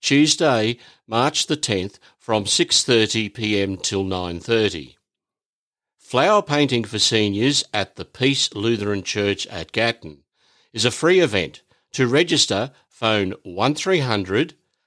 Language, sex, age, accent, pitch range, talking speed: English, male, 50-69, Australian, 100-130 Hz, 115 wpm